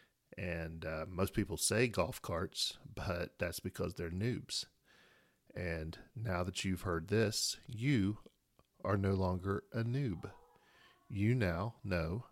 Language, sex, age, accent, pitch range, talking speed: English, male, 40-59, American, 95-110 Hz, 130 wpm